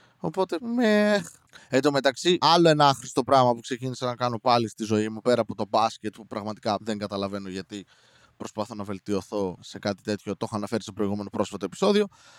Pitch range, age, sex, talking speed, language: 110-145 Hz, 20-39, male, 180 wpm, Greek